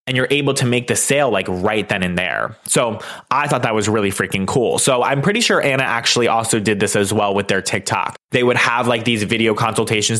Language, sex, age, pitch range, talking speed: English, male, 20-39, 105-135 Hz, 240 wpm